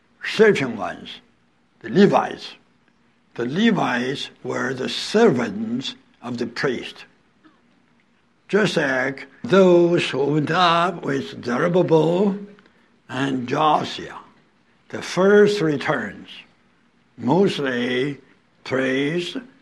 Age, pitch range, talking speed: 70-89, 140-210 Hz, 85 wpm